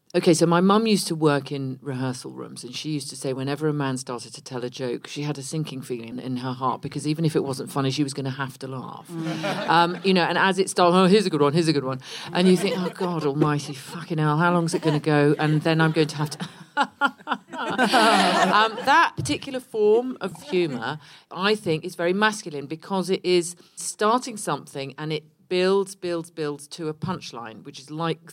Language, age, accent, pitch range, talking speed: English, 40-59, British, 155-200 Hz, 230 wpm